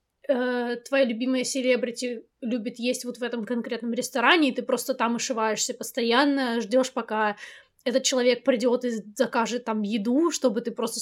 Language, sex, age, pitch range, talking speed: Russian, female, 20-39, 225-260 Hz, 150 wpm